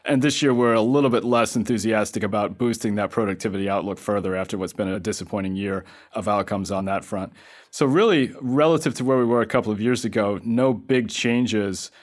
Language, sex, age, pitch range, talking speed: English, male, 30-49, 105-120 Hz, 205 wpm